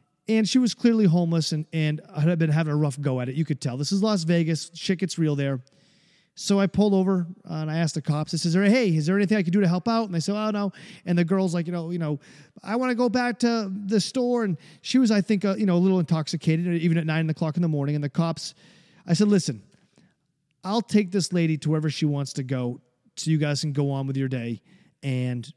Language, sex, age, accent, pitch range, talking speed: English, male, 30-49, American, 150-185 Hz, 265 wpm